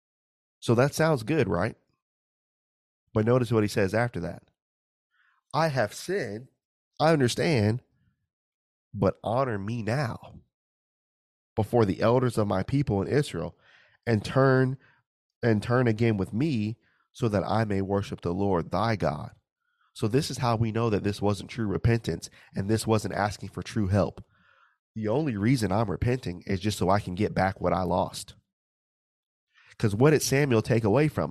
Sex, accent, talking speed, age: male, American, 165 wpm, 30-49